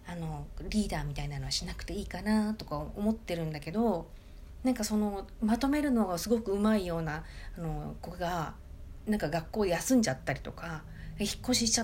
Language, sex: Japanese, female